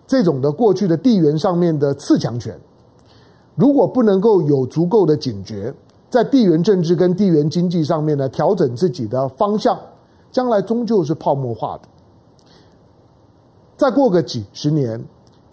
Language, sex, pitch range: Chinese, male, 130-180 Hz